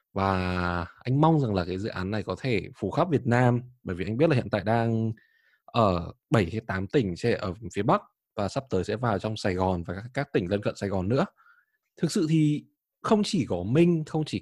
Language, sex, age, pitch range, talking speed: Vietnamese, male, 20-39, 100-145 Hz, 230 wpm